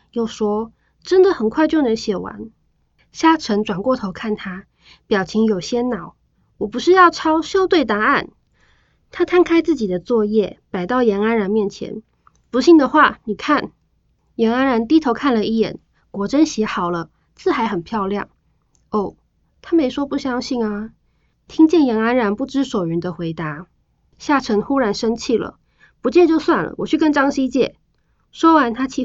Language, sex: Chinese, female